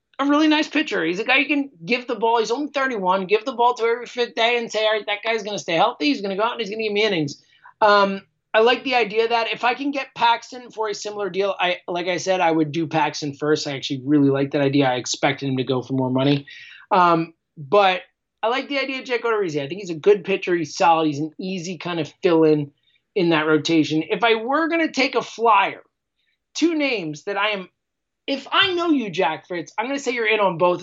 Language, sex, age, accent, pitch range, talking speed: English, male, 30-49, American, 165-235 Hz, 265 wpm